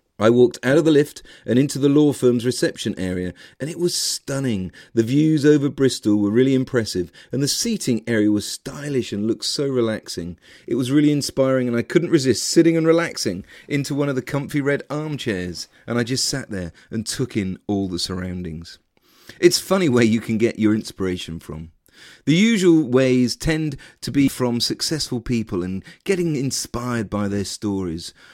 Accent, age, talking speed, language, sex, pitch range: British, 40-59, 185 wpm, English, male, 105-140 Hz